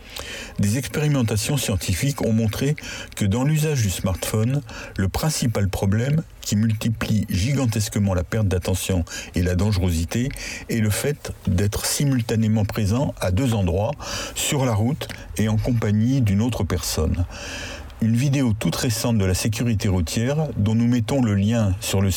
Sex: male